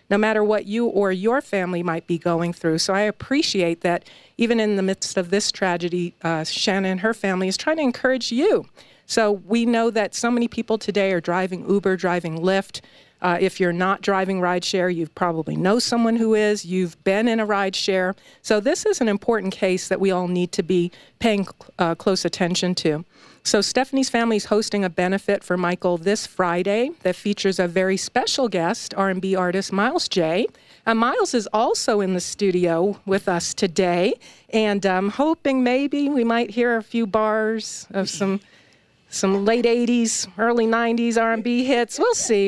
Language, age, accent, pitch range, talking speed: English, 50-69, American, 185-225 Hz, 185 wpm